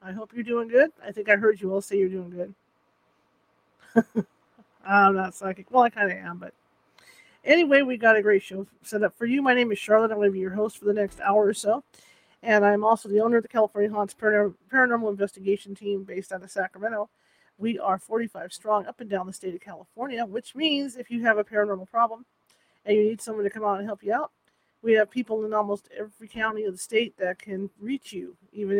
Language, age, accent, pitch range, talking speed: English, 40-59, American, 200-225 Hz, 230 wpm